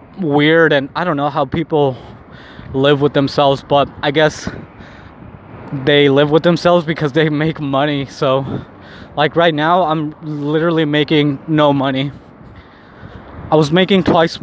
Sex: male